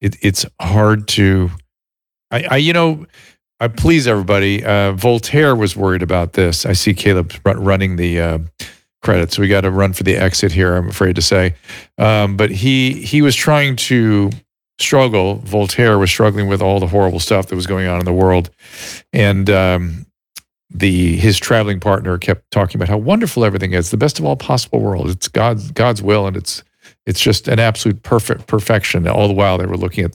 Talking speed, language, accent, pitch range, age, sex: 190 wpm, English, American, 95-115 Hz, 50-69, male